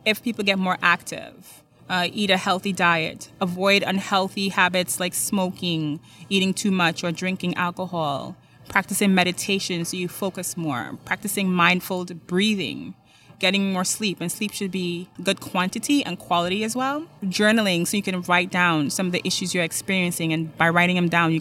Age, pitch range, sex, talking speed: 20-39, 175-200 Hz, female, 170 wpm